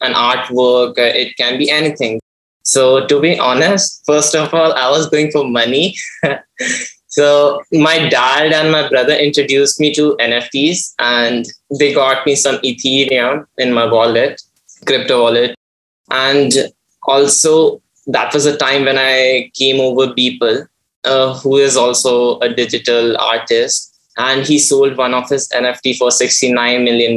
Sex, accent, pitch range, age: male, Indian, 125-145 Hz, 20-39